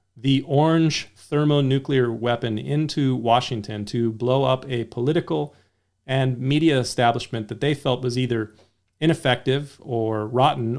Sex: male